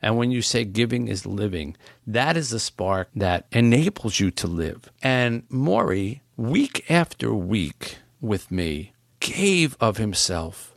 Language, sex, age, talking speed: English, male, 50-69, 145 wpm